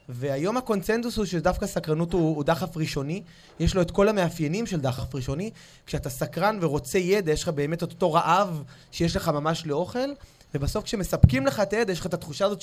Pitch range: 150-205 Hz